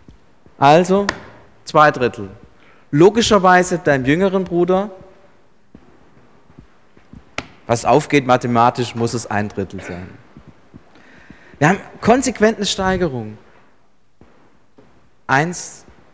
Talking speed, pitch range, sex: 80 wpm, 125-175 Hz, male